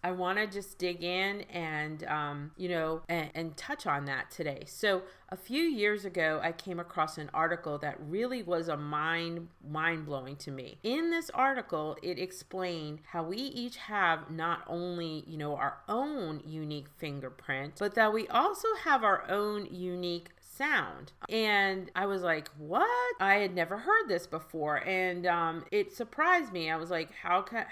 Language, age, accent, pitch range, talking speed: English, 40-59, American, 160-215 Hz, 180 wpm